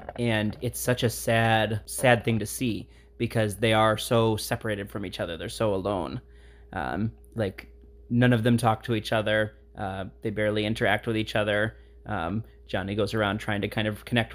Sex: male